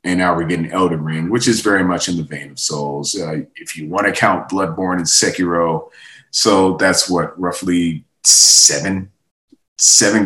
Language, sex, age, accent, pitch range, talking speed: English, male, 30-49, American, 85-100 Hz, 175 wpm